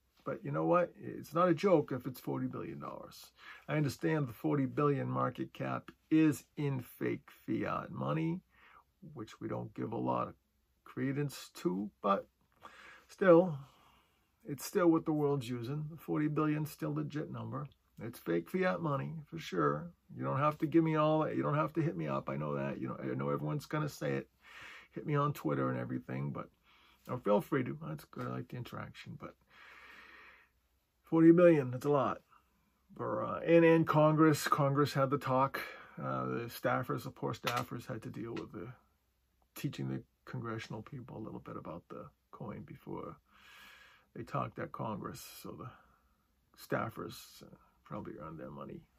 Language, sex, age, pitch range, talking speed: English, male, 40-59, 110-160 Hz, 180 wpm